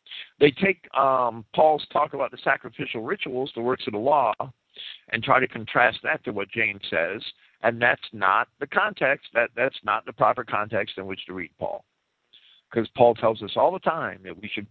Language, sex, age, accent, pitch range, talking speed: English, male, 50-69, American, 120-205 Hz, 200 wpm